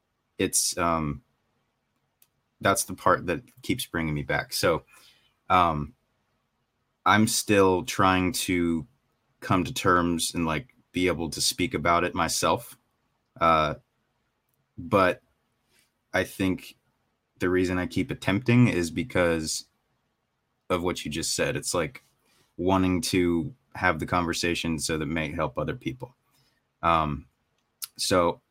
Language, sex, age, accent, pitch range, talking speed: English, male, 30-49, American, 80-95 Hz, 125 wpm